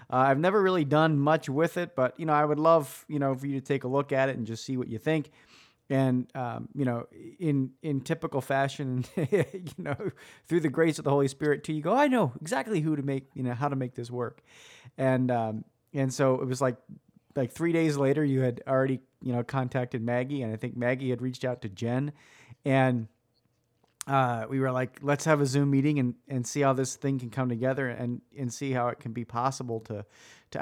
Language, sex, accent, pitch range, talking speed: English, male, American, 125-145 Hz, 235 wpm